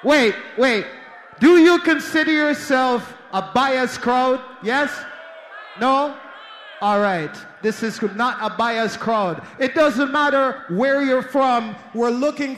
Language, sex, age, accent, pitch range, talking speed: English, male, 30-49, American, 220-290 Hz, 130 wpm